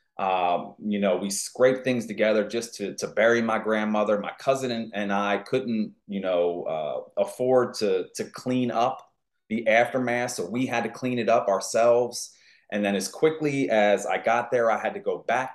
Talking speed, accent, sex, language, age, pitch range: 190 wpm, American, male, English, 30-49, 105-135 Hz